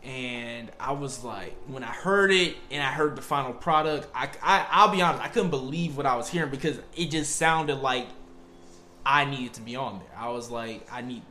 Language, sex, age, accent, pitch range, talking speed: English, male, 20-39, American, 115-170 Hz, 210 wpm